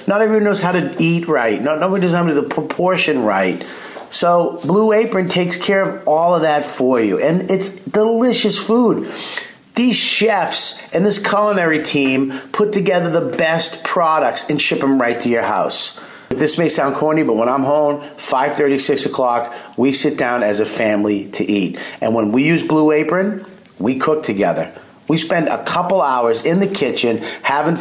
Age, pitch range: 40-59, 135-190 Hz